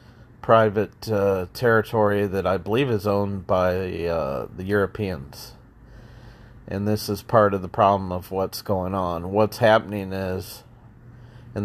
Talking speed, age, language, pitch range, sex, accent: 140 wpm, 40-59, English, 100-115 Hz, male, American